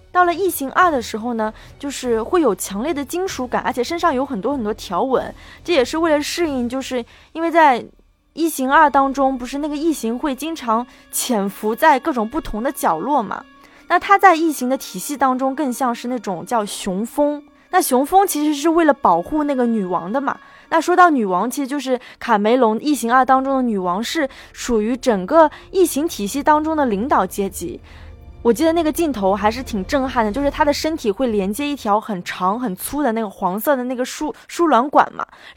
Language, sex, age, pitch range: Chinese, female, 20-39, 225-310 Hz